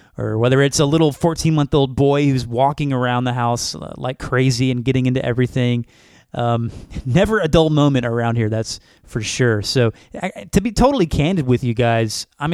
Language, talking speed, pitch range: English, 175 wpm, 125-165 Hz